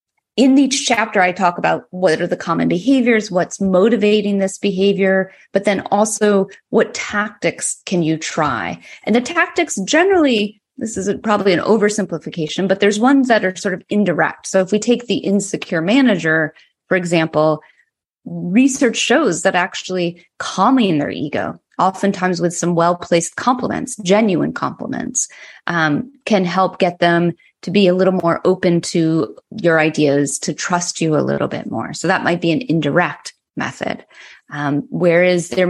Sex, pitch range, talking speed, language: female, 170-215 Hz, 160 wpm, English